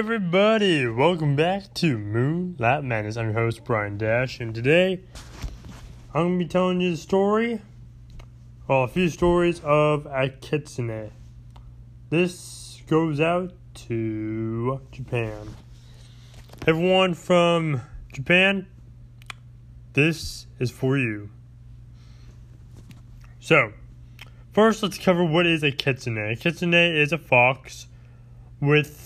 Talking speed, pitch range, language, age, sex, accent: 115 wpm, 120-150 Hz, English, 20-39, male, American